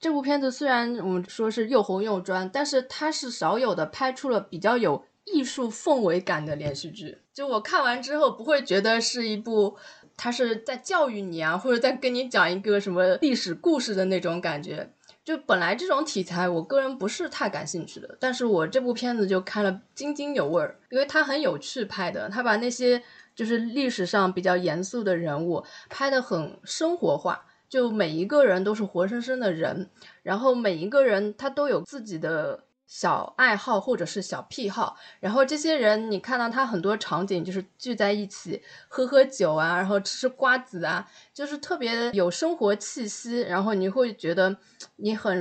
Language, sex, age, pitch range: Chinese, female, 20-39, 190-265 Hz